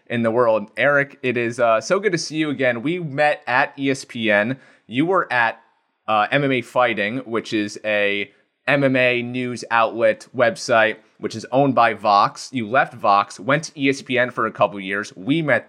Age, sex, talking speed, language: 30-49, male, 180 wpm, English